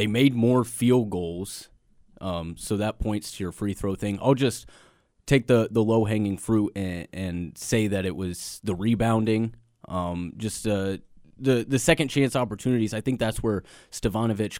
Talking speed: 175 wpm